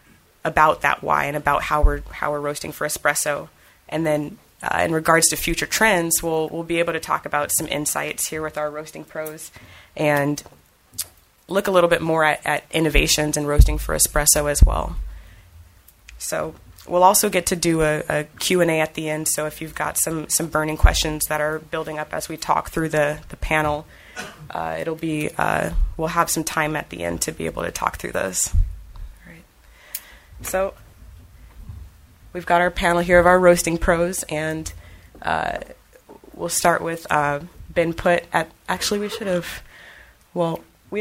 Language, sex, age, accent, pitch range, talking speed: English, female, 20-39, American, 140-170 Hz, 180 wpm